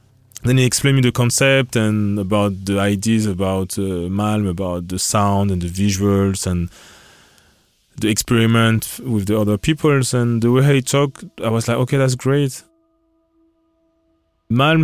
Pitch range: 100-125 Hz